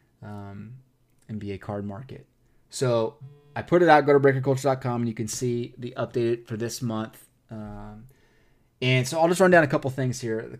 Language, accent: English, American